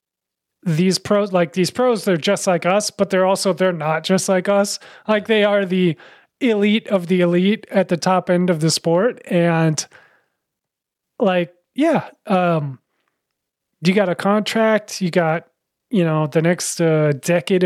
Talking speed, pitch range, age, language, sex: 165 wpm, 165-200 Hz, 30-49, English, male